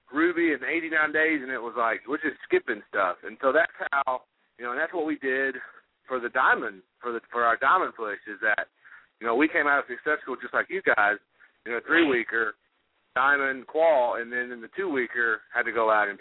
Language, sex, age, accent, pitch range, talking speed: English, male, 40-59, American, 115-150 Hz, 220 wpm